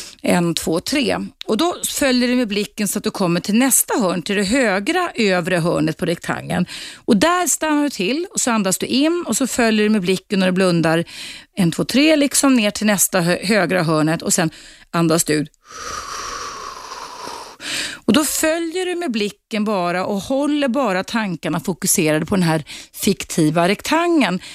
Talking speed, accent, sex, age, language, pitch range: 180 wpm, native, female, 30-49, Swedish, 170-275 Hz